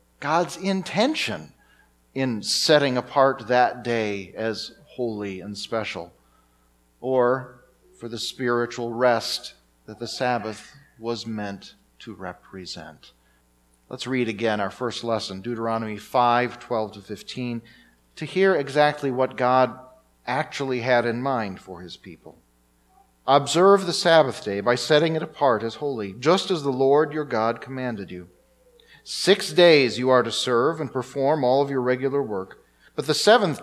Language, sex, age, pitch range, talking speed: English, male, 40-59, 110-140 Hz, 140 wpm